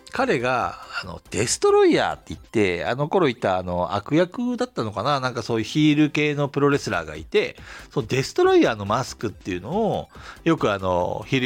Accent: native